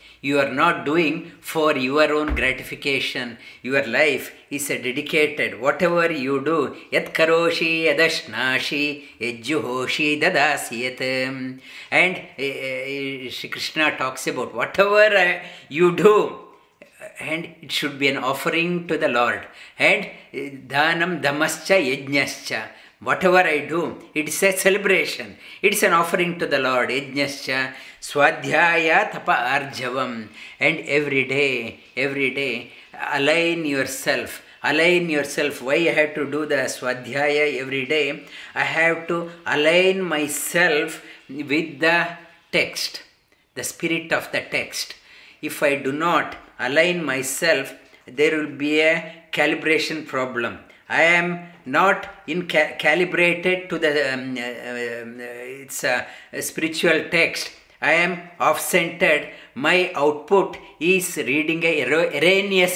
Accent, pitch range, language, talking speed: Indian, 140-175 Hz, English, 120 wpm